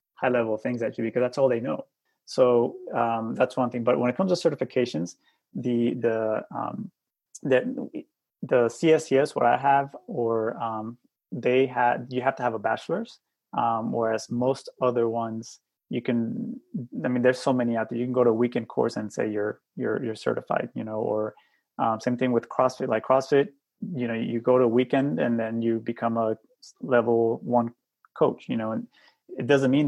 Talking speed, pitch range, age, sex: 195 wpm, 115-130 Hz, 30-49, male